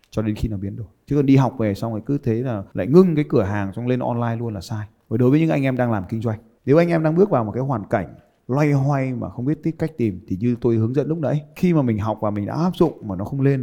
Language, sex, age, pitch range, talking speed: Vietnamese, male, 20-39, 110-150 Hz, 325 wpm